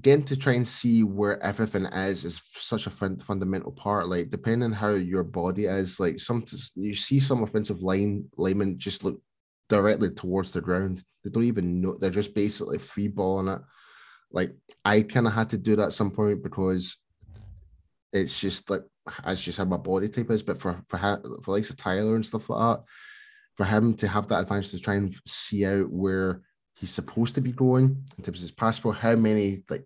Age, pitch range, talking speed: 10-29, 95-115 Hz, 215 wpm